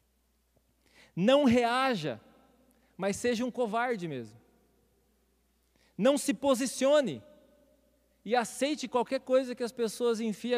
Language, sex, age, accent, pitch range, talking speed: Portuguese, male, 40-59, Brazilian, 170-240 Hz, 100 wpm